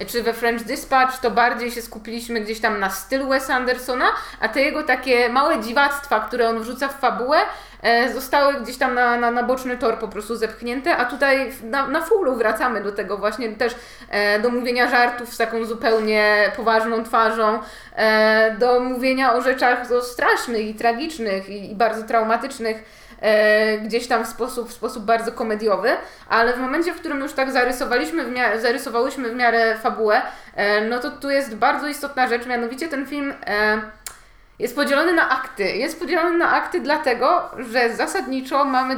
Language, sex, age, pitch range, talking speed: Polish, female, 20-39, 230-275 Hz, 170 wpm